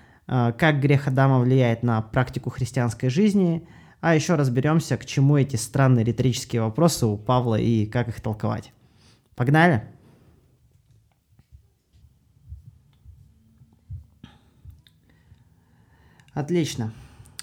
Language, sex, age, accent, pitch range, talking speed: Russian, male, 20-39, native, 125-165 Hz, 85 wpm